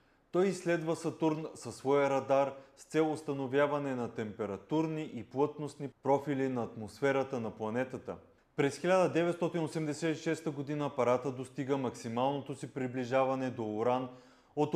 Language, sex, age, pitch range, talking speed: Bulgarian, male, 30-49, 125-155 Hz, 120 wpm